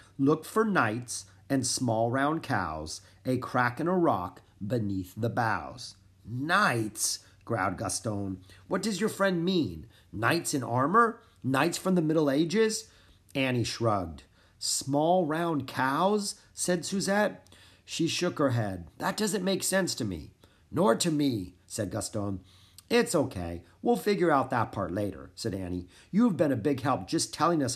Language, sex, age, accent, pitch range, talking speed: English, male, 40-59, American, 100-155 Hz, 155 wpm